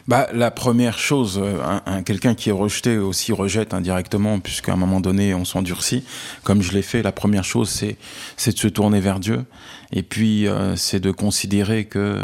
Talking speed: 195 wpm